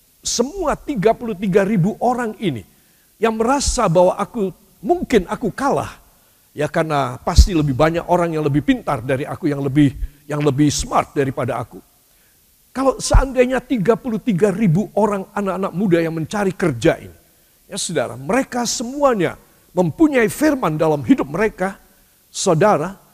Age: 50-69